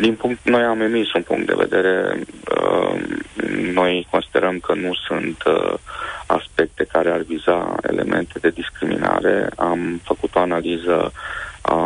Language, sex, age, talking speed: Romanian, male, 50-69, 130 wpm